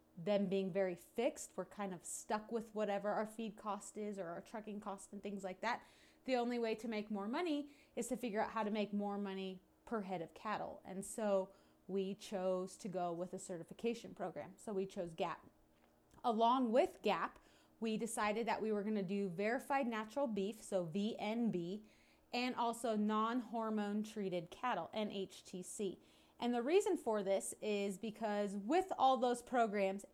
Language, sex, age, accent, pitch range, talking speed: English, female, 30-49, American, 195-235 Hz, 175 wpm